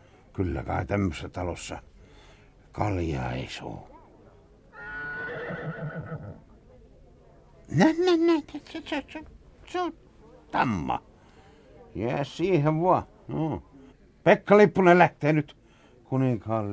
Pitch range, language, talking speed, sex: 90-135 Hz, Finnish, 65 wpm, male